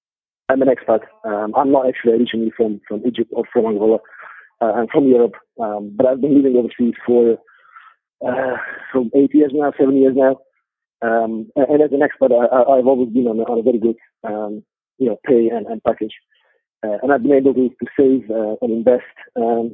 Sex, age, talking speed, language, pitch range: male, 40-59, 205 wpm, English, 115-135 Hz